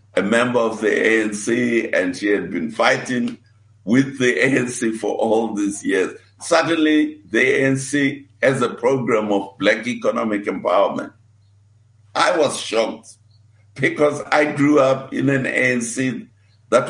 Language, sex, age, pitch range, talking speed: English, male, 60-79, 105-135 Hz, 135 wpm